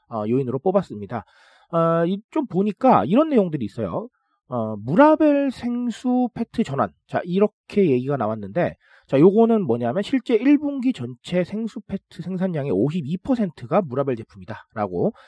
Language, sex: Korean, male